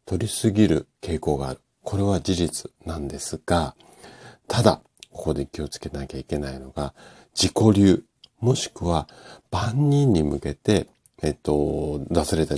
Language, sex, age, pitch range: Japanese, male, 50-69, 75-110 Hz